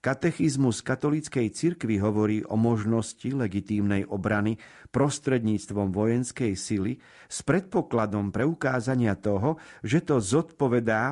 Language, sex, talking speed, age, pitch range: Slovak, male, 95 wpm, 50-69, 105-135 Hz